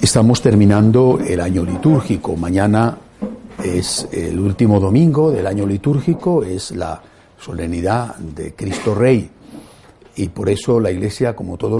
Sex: male